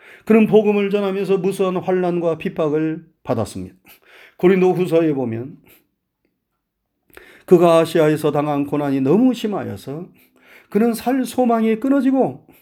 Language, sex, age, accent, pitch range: Korean, male, 40-59, native, 140-200 Hz